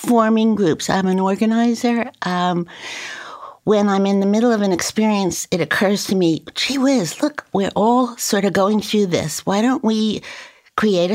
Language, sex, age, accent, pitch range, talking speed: English, female, 60-79, American, 175-215 Hz, 170 wpm